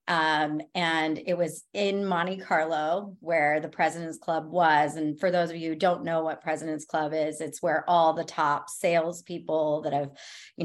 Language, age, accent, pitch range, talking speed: English, 30-49, American, 165-190 Hz, 185 wpm